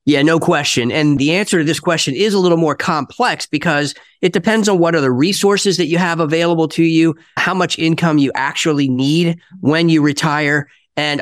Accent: American